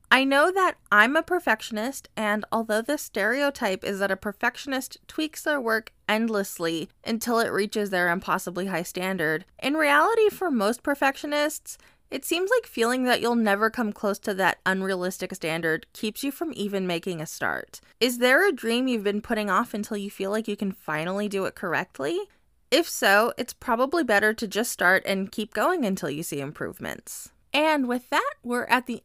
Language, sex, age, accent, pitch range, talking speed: English, female, 20-39, American, 205-285 Hz, 185 wpm